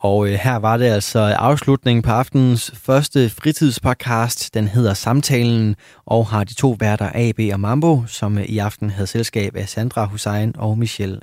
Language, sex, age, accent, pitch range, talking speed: Danish, male, 20-39, native, 100-120 Hz, 165 wpm